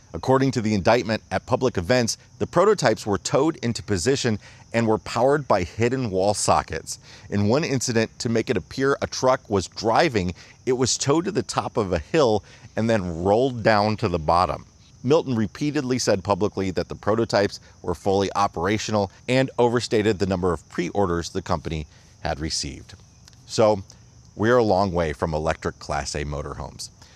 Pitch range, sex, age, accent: 95-125 Hz, male, 30-49, American